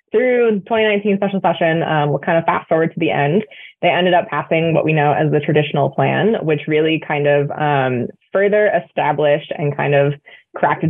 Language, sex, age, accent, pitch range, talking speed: English, female, 20-39, American, 140-170 Hz, 195 wpm